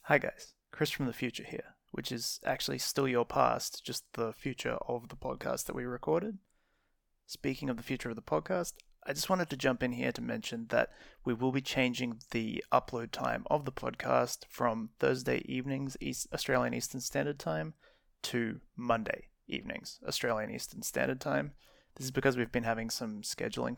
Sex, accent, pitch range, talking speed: male, Australian, 115-135 Hz, 180 wpm